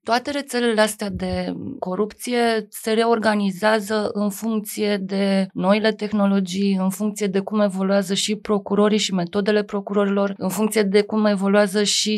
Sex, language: female, Romanian